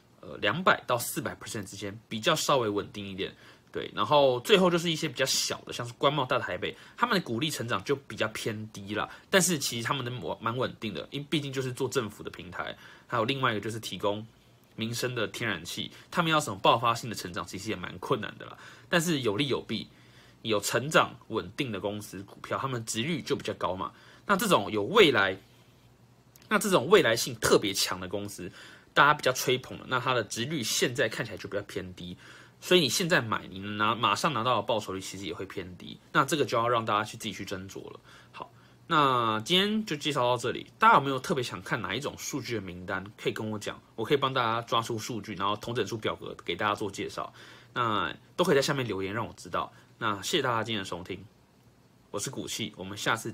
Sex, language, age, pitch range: male, Chinese, 20-39, 100-135 Hz